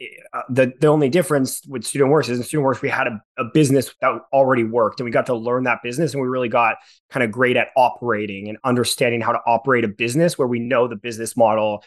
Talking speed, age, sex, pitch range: 250 wpm, 20-39, male, 115-135 Hz